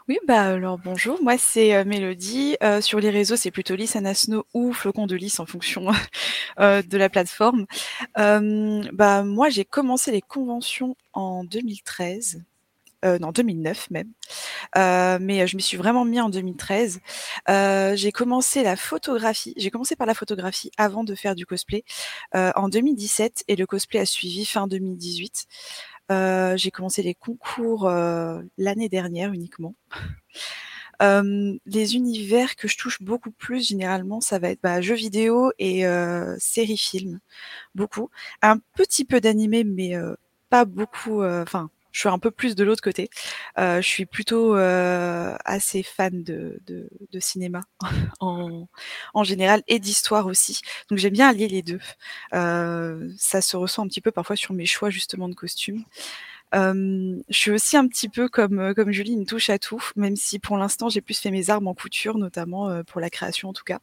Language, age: French, 20-39